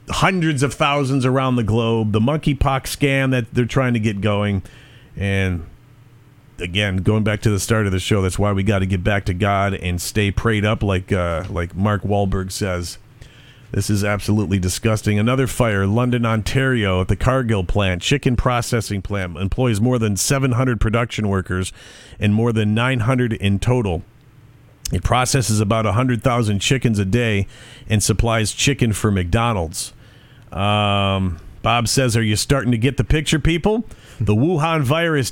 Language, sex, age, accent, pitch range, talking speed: English, male, 40-59, American, 105-130 Hz, 165 wpm